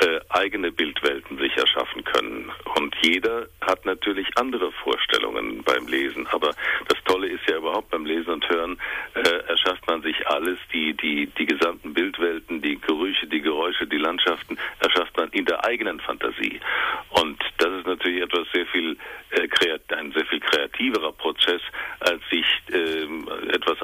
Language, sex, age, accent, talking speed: German, male, 50-69, German, 160 wpm